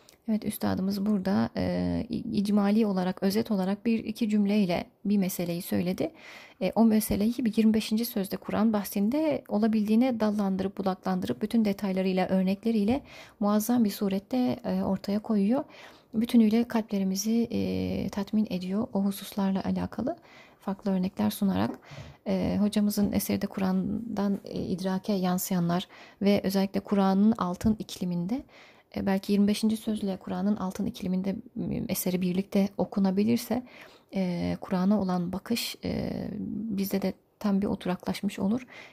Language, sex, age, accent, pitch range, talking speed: Turkish, female, 30-49, native, 190-220 Hz, 115 wpm